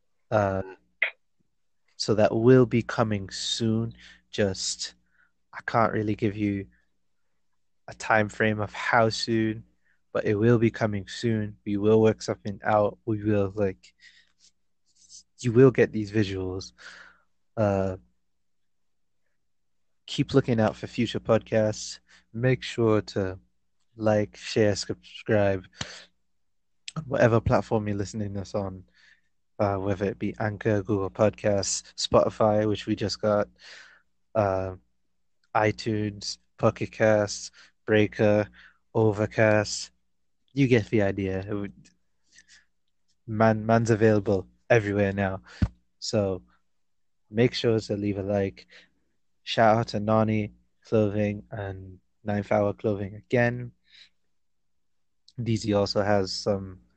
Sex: male